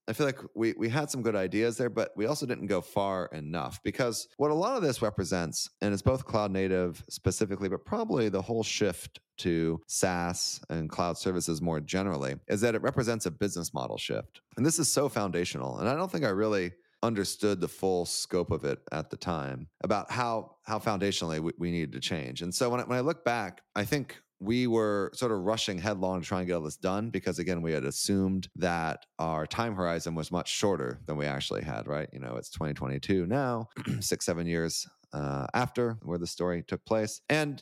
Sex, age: male, 30-49